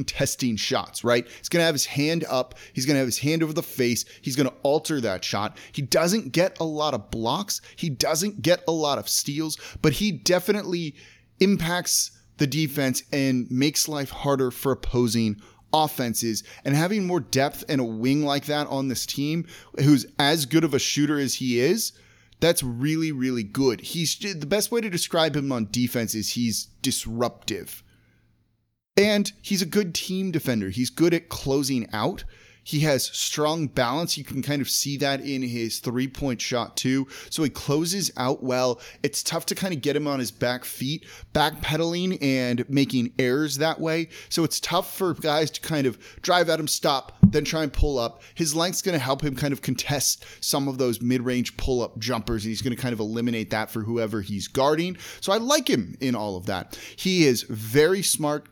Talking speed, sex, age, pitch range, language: 200 wpm, male, 30-49, 120-160 Hz, English